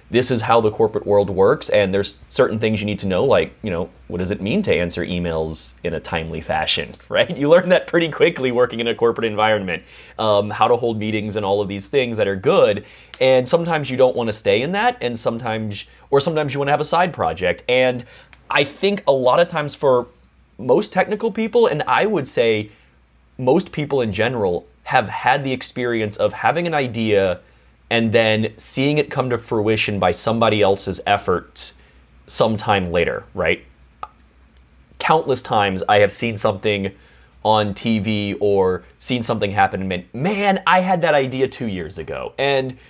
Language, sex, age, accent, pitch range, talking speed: English, male, 30-49, American, 90-130 Hz, 185 wpm